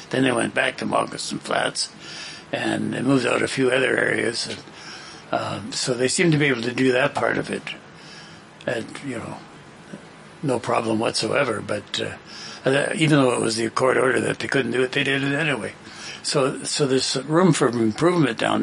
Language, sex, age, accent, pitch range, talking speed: English, male, 60-79, American, 125-140 Hz, 195 wpm